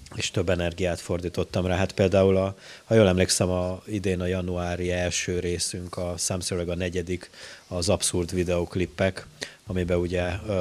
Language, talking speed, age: Hungarian, 145 wpm, 30-49